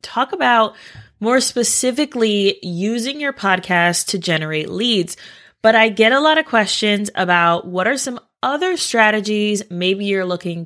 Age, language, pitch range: 20-39, English, 175-225 Hz